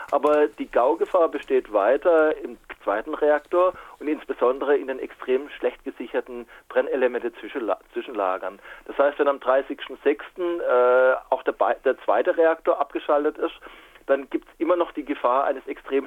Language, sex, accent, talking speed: German, male, German, 140 wpm